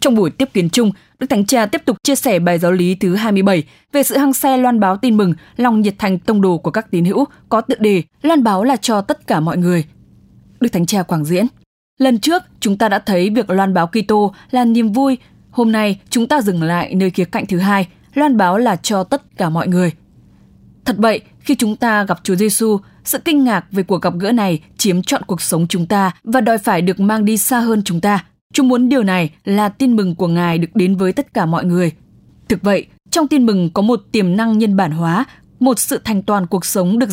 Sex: female